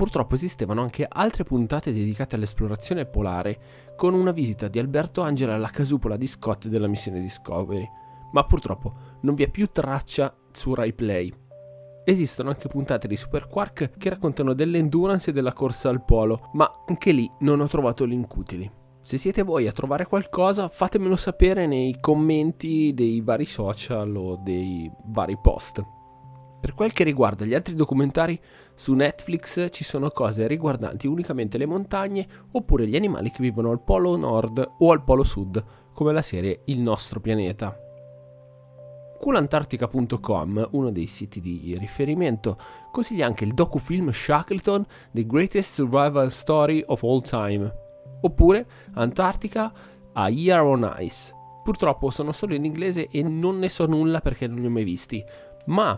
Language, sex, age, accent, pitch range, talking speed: Italian, male, 20-39, native, 110-160 Hz, 155 wpm